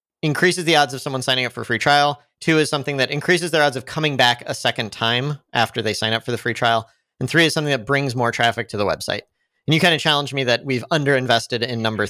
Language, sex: English, male